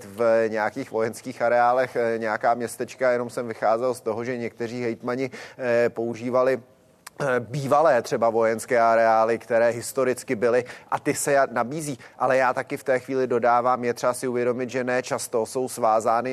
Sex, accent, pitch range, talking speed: male, native, 120-130 Hz, 155 wpm